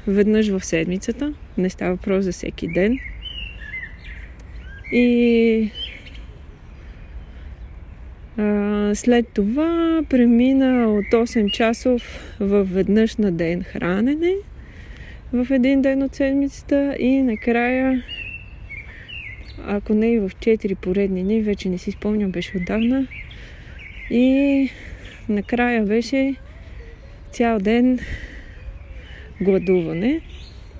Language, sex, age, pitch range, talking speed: English, female, 20-39, 185-240 Hz, 95 wpm